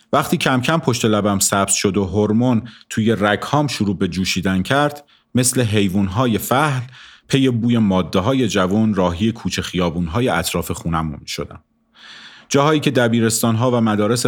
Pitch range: 100-135 Hz